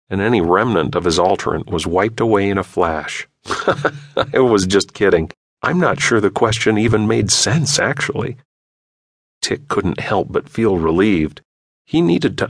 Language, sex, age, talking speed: English, male, 40-59, 165 wpm